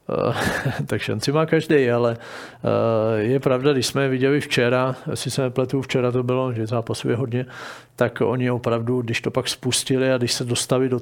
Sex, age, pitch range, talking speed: male, 50-69, 120-140 Hz, 185 wpm